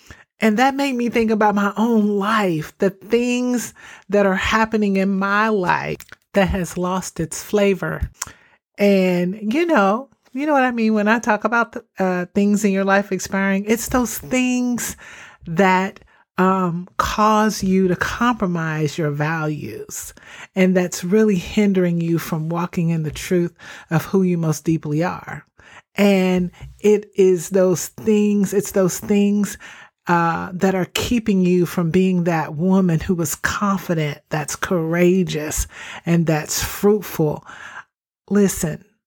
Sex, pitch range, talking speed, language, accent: male, 170-205 Hz, 145 wpm, English, American